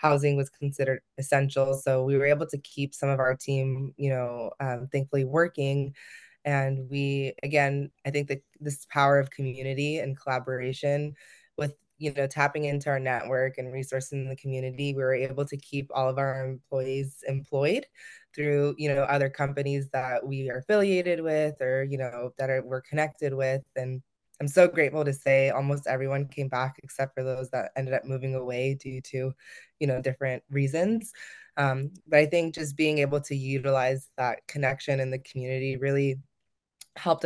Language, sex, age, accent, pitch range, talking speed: English, female, 20-39, American, 135-145 Hz, 180 wpm